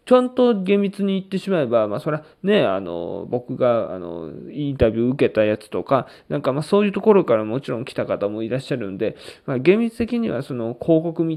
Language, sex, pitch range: Japanese, male, 130-190 Hz